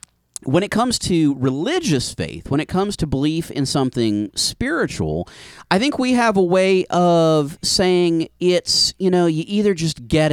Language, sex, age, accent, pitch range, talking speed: English, male, 40-59, American, 135-190 Hz, 170 wpm